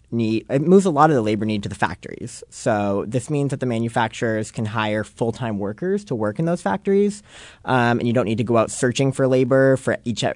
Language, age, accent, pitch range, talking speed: English, 30-49, American, 105-135 Hz, 230 wpm